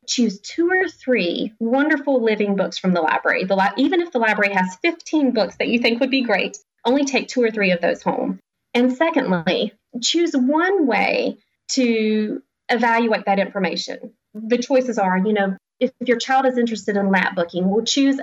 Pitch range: 190-250 Hz